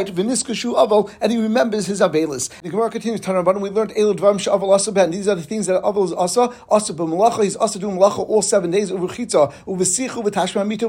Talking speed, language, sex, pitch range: 235 wpm, English, male, 185-220 Hz